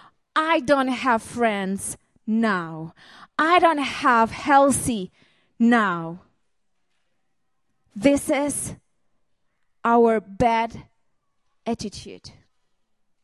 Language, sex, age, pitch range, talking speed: Czech, female, 20-39, 230-300 Hz, 70 wpm